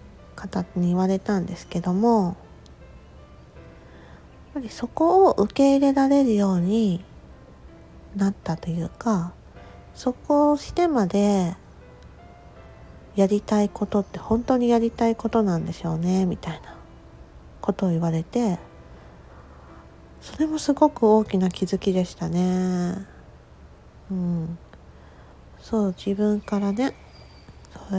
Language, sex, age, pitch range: Japanese, female, 40-59, 160-215 Hz